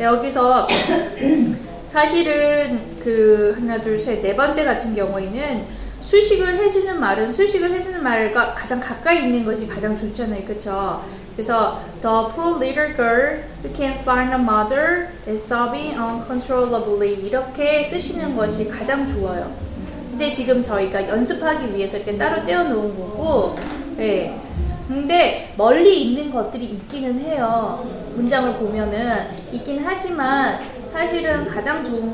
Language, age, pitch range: Korean, 20-39, 215-285 Hz